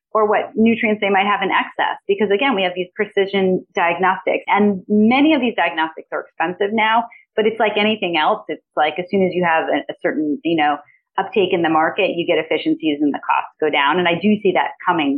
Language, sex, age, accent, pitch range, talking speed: English, female, 30-49, American, 180-245 Hz, 225 wpm